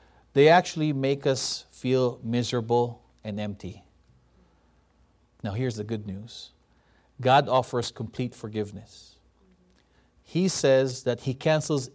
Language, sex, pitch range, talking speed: English, male, 105-150 Hz, 110 wpm